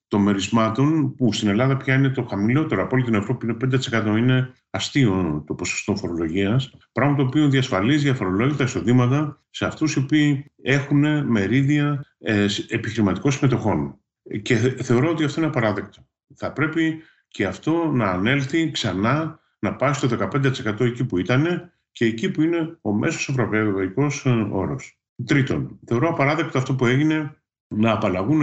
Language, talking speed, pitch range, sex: Greek, 155 wpm, 105-145 Hz, male